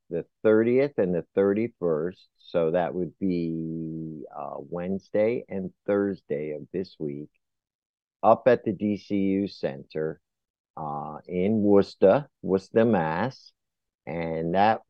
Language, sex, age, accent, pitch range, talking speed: English, male, 50-69, American, 80-105 Hz, 115 wpm